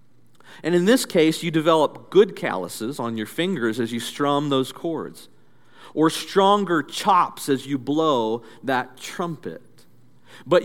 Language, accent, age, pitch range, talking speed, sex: English, American, 50-69, 125-190 Hz, 140 wpm, male